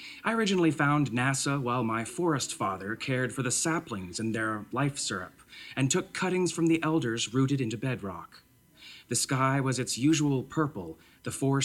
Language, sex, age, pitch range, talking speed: English, male, 30-49, 115-150 Hz, 165 wpm